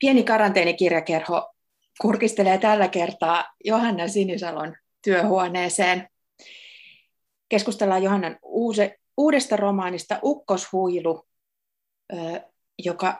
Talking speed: 65 wpm